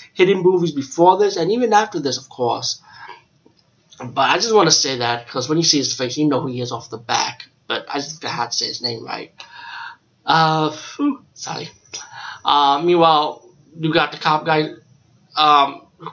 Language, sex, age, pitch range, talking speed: English, male, 20-39, 130-150 Hz, 190 wpm